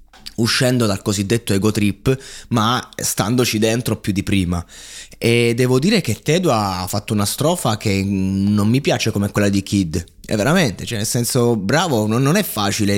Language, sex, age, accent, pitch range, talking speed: Italian, male, 20-39, native, 105-145 Hz, 170 wpm